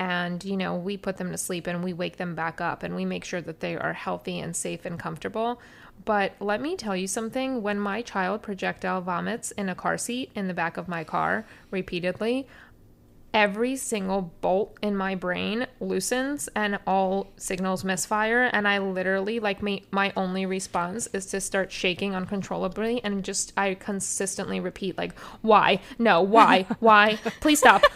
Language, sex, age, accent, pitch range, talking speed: English, female, 20-39, American, 190-220 Hz, 180 wpm